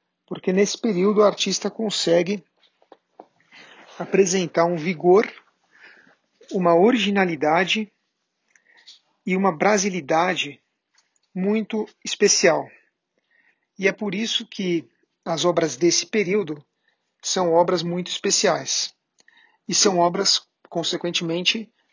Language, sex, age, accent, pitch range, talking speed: Portuguese, male, 40-59, Brazilian, 170-205 Hz, 90 wpm